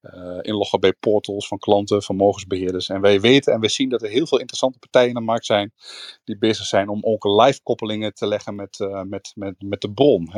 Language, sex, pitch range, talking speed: Dutch, male, 105-130 Hz, 210 wpm